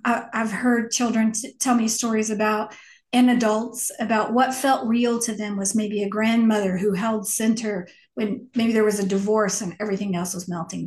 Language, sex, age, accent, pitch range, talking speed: English, female, 40-59, American, 220-265 Hz, 180 wpm